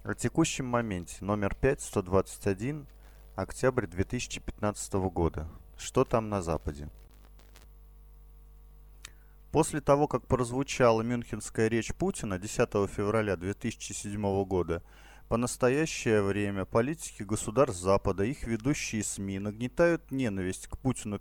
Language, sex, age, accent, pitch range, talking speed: Russian, male, 30-49, native, 100-135 Hz, 105 wpm